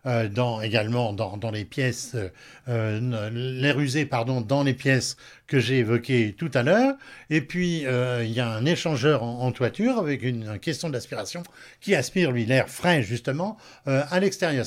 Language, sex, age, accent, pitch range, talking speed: French, male, 60-79, French, 120-160 Hz, 190 wpm